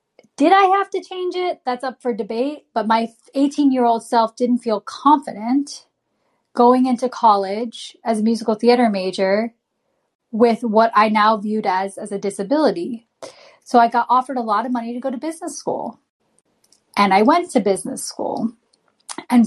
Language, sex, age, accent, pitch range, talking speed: English, female, 10-29, American, 220-270 Hz, 165 wpm